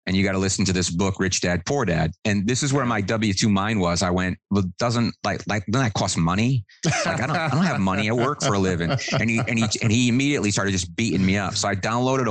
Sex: male